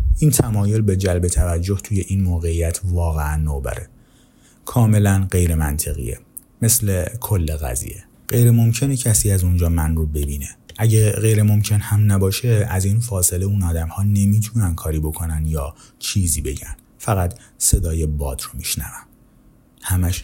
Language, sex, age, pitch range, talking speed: Persian, male, 30-49, 80-105 Hz, 140 wpm